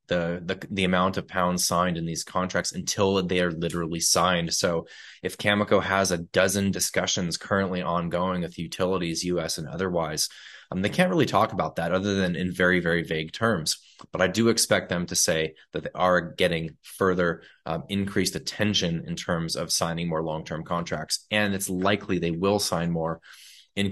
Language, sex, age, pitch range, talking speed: English, male, 20-39, 85-100 Hz, 185 wpm